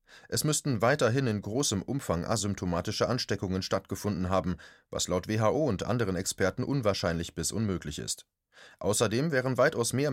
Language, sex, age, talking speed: German, male, 30-49, 140 wpm